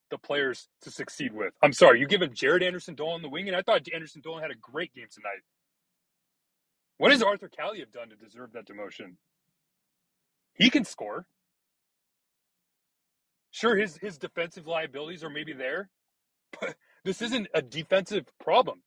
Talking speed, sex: 160 wpm, male